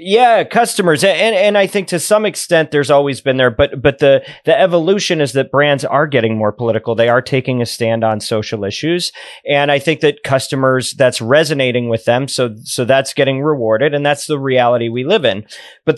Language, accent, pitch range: English, American, 120-155 Hz